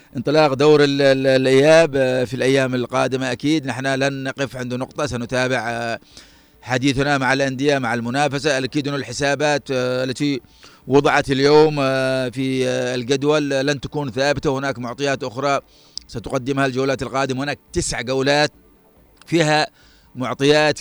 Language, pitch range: Arabic, 130-150 Hz